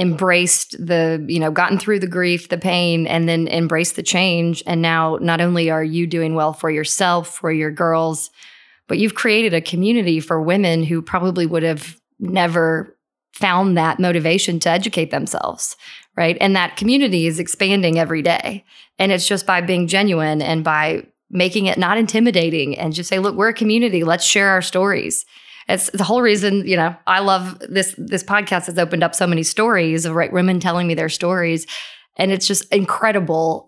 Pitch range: 165-195 Hz